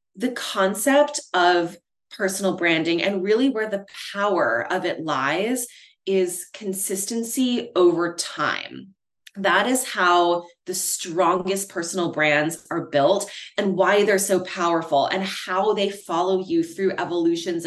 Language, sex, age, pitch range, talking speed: English, female, 20-39, 170-205 Hz, 130 wpm